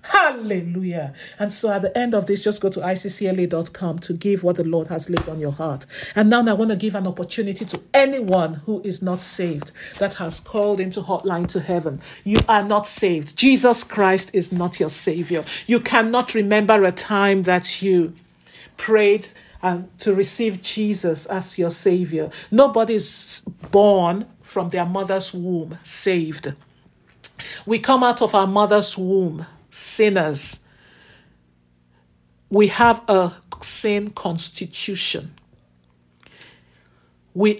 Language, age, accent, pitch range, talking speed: English, 50-69, Nigerian, 170-210 Hz, 140 wpm